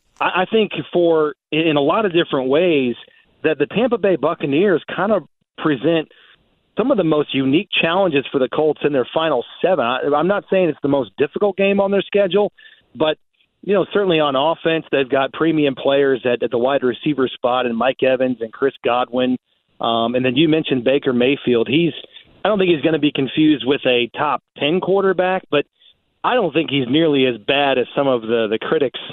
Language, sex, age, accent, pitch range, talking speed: English, male, 40-59, American, 130-165 Hz, 205 wpm